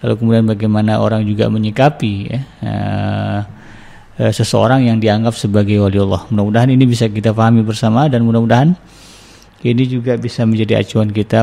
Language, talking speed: Indonesian, 150 wpm